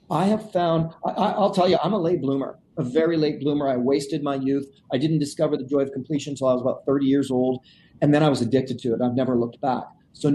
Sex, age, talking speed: male, 40-59, 260 wpm